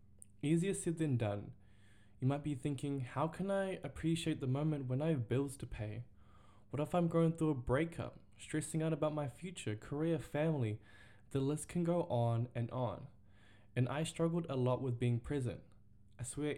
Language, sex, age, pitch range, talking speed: English, male, 10-29, 110-150 Hz, 185 wpm